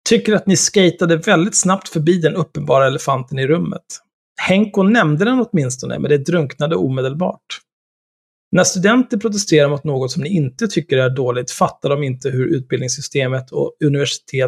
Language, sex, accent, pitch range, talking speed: Swedish, male, native, 130-170 Hz, 160 wpm